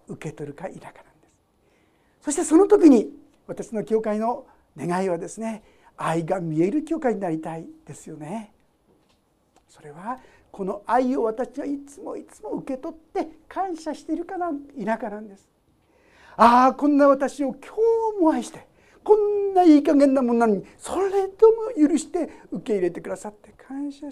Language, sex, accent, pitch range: Japanese, male, native, 210-315 Hz